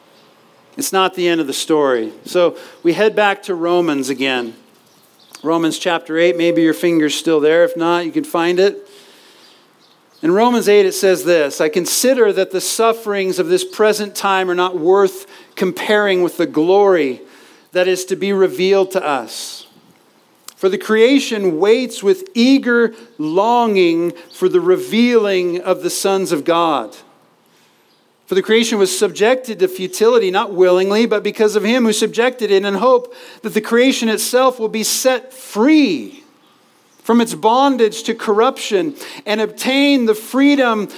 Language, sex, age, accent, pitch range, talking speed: English, male, 50-69, American, 185-245 Hz, 155 wpm